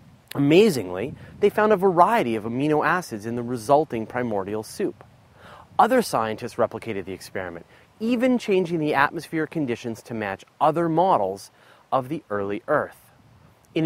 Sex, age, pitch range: male, 30-49, 115-190 Hz